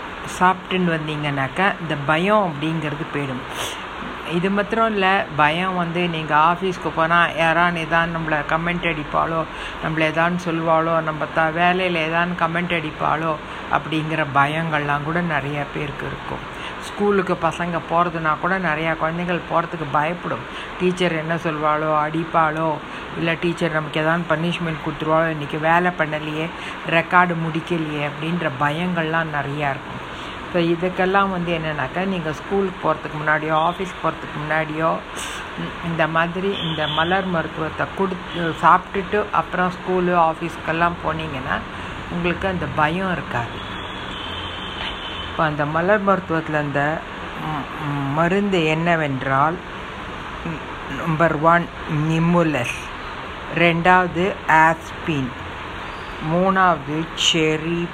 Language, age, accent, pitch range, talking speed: Tamil, 60-79, native, 155-175 Hz, 105 wpm